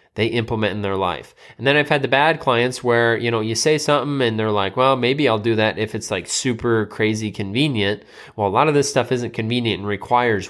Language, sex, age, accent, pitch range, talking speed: English, male, 20-39, American, 115-160 Hz, 240 wpm